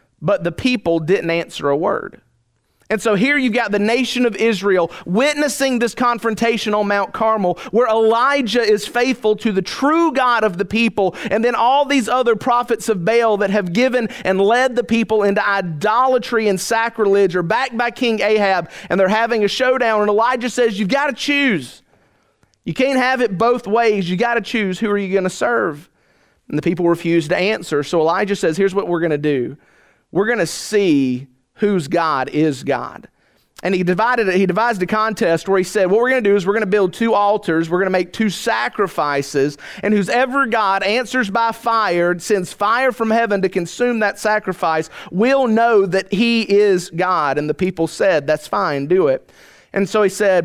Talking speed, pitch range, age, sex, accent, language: 195 wpm, 180-235 Hz, 30-49, male, American, English